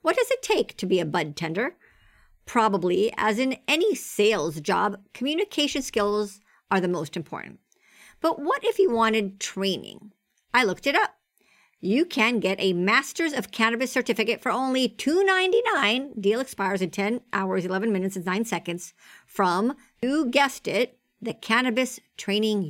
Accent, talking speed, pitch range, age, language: American, 160 wpm, 195-255 Hz, 50-69, English